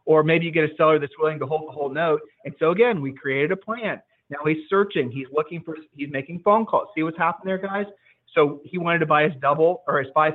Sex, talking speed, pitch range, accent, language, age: male, 260 wpm, 135-170 Hz, American, English, 30-49